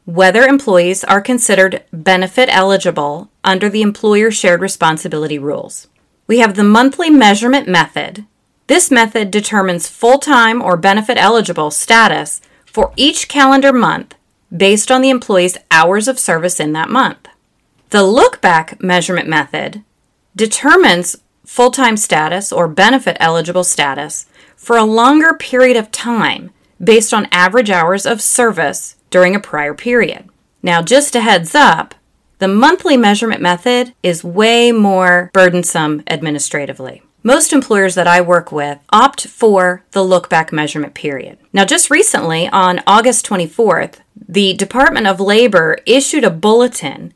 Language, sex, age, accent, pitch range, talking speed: English, female, 30-49, American, 180-245 Hz, 130 wpm